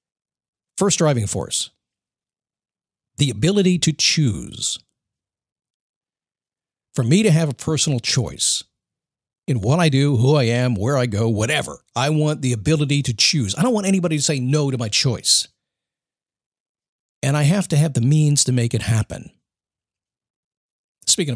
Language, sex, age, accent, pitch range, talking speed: English, male, 50-69, American, 130-175 Hz, 150 wpm